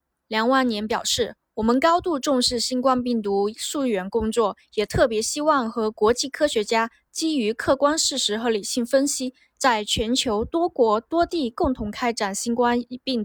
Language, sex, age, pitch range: Chinese, female, 20-39, 215-280 Hz